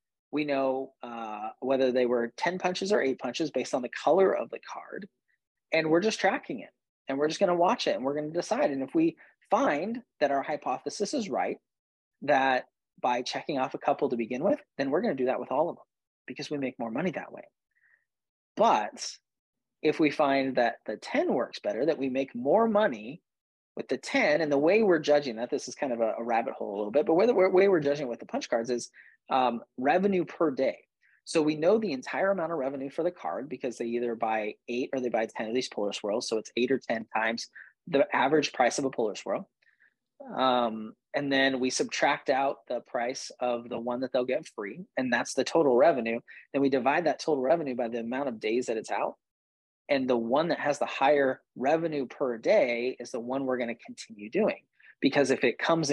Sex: male